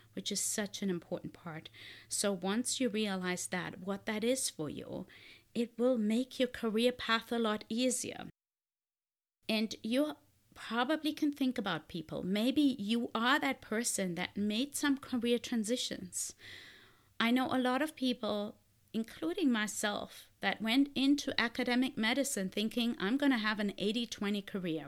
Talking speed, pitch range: 150 wpm, 190-255 Hz